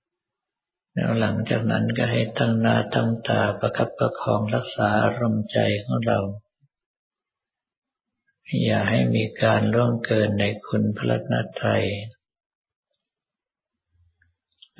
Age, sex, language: 50-69, male, Thai